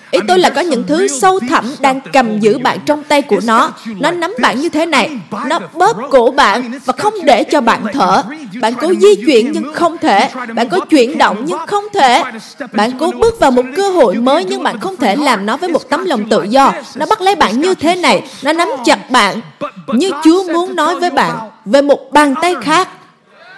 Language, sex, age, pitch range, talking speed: Vietnamese, female, 20-39, 230-330 Hz, 225 wpm